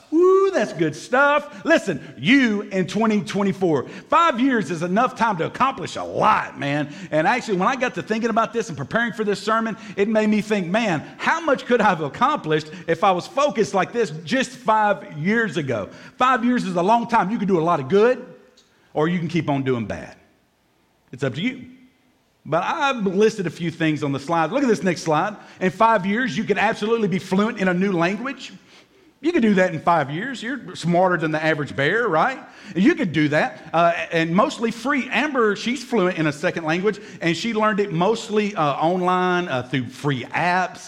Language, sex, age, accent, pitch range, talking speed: English, male, 50-69, American, 155-230 Hz, 210 wpm